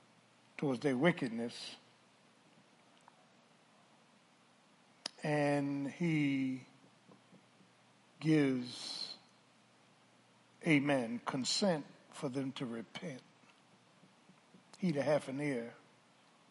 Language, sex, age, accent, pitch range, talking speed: English, male, 60-79, American, 125-155 Hz, 60 wpm